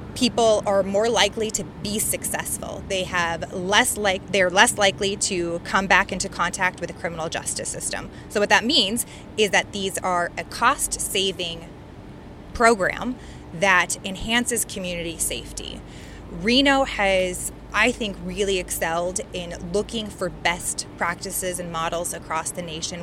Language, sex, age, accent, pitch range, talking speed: English, female, 20-39, American, 175-210 Hz, 145 wpm